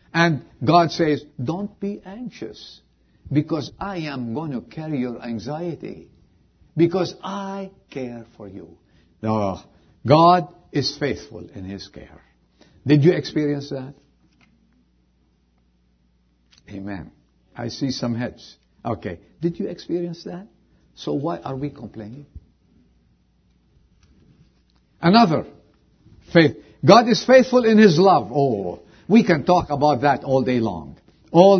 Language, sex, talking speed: English, male, 120 wpm